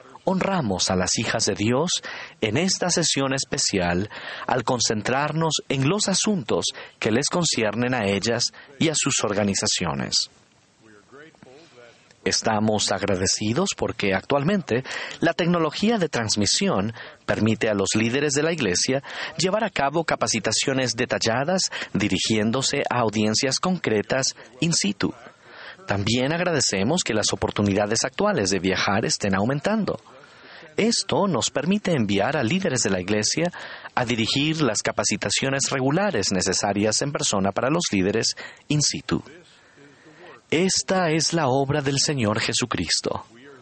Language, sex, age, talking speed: Spanish, male, 40-59, 120 wpm